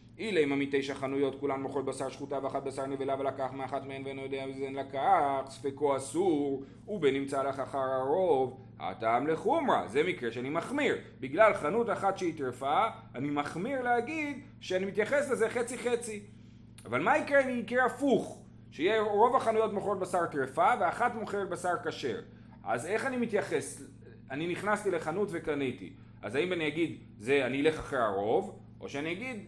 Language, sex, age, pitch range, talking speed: Hebrew, male, 30-49, 135-225 Hz, 165 wpm